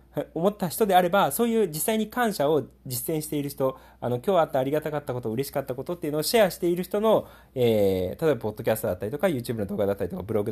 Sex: male